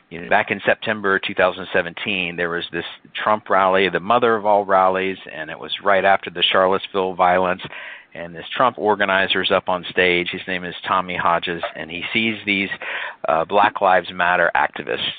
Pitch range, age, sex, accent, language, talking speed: 90-120 Hz, 50-69, male, American, English, 175 wpm